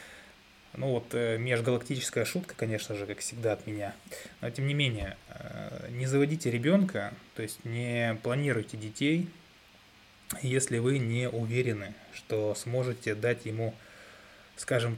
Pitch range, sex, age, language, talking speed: 105-125 Hz, male, 20-39, Russian, 125 wpm